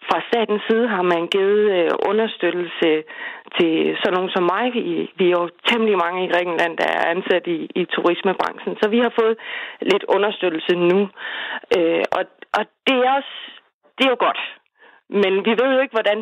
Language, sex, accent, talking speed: Danish, female, native, 185 wpm